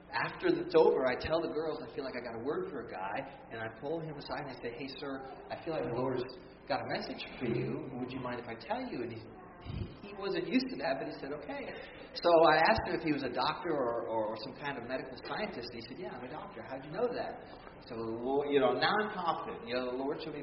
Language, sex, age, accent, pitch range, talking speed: English, male, 40-59, American, 120-160 Hz, 280 wpm